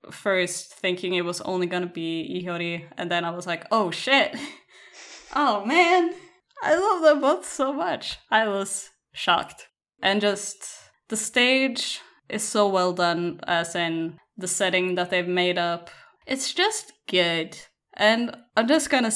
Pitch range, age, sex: 180-235 Hz, 10-29, female